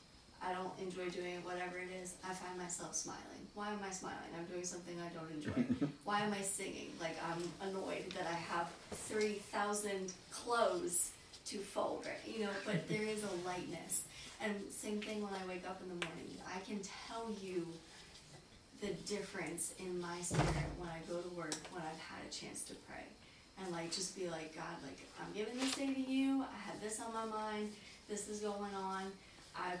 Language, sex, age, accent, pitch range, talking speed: English, female, 20-39, American, 175-205 Hz, 200 wpm